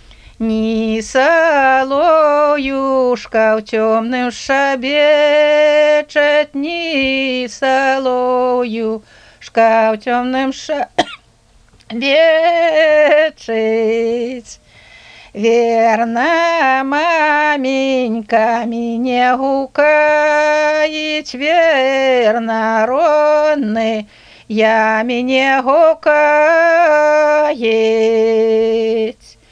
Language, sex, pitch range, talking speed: Russian, female, 225-300 Hz, 40 wpm